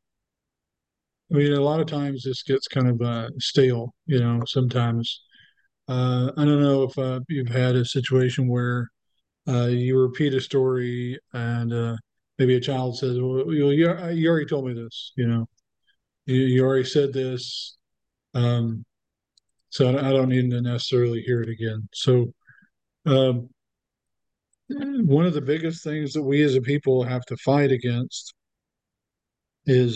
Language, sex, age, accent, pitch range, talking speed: English, male, 50-69, American, 120-140 Hz, 160 wpm